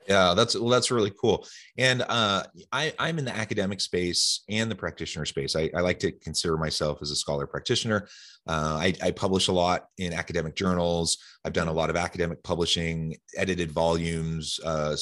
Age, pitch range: 30-49, 80-100 Hz